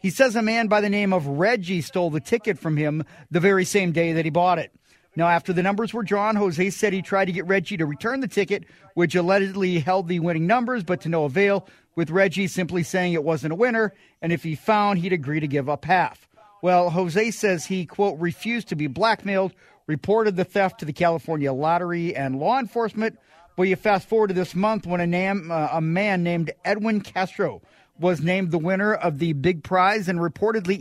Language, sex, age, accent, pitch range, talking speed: English, male, 40-59, American, 170-200 Hz, 215 wpm